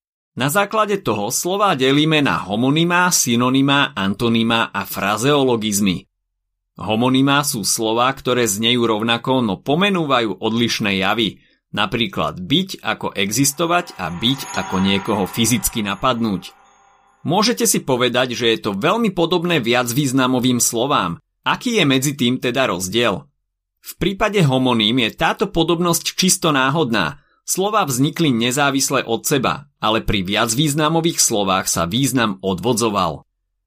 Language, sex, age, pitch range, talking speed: Slovak, male, 30-49, 100-150 Hz, 120 wpm